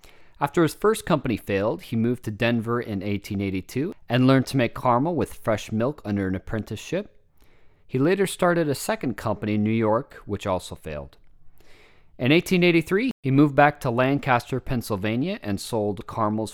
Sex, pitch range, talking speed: male, 110-145 Hz, 165 wpm